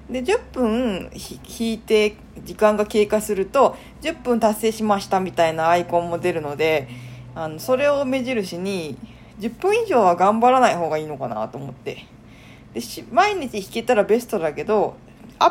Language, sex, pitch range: Japanese, female, 160-240 Hz